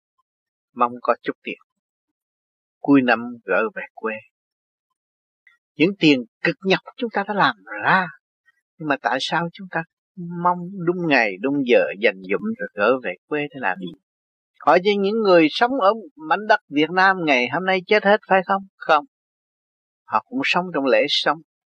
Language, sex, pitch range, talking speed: Vietnamese, male, 140-215 Hz, 170 wpm